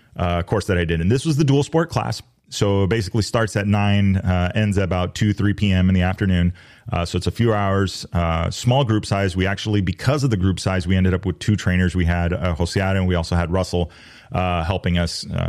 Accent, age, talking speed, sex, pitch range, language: American, 30-49, 245 wpm, male, 90-110 Hz, English